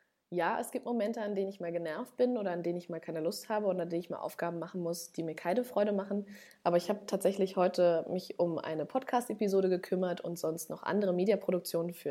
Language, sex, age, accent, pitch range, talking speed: German, female, 20-39, German, 180-225 Hz, 235 wpm